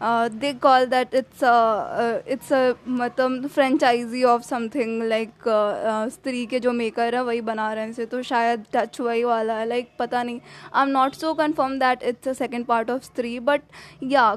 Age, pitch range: 20-39, 225-270 Hz